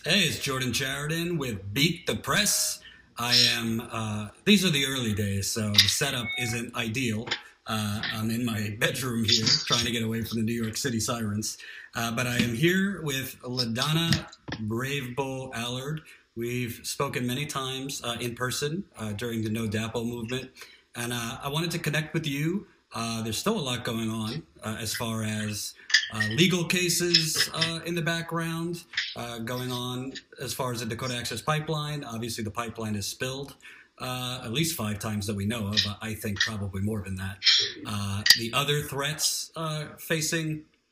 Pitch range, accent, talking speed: 110-145 Hz, American, 175 wpm